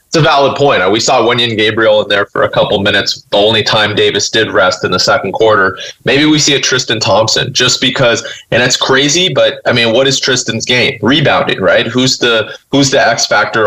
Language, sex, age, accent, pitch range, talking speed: English, male, 30-49, American, 105-130 Hz, 220 wpm